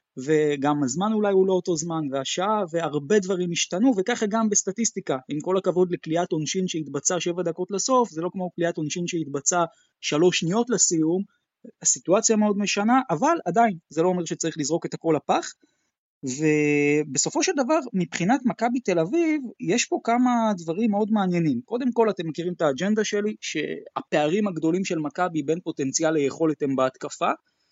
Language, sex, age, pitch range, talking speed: Hebrew, male, 20-39, 155-215 Hz, 160 wpm